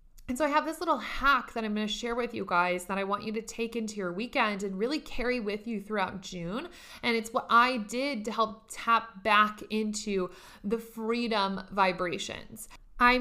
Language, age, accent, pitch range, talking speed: English, 20-39, American, 200-245 Hz, 205 wpm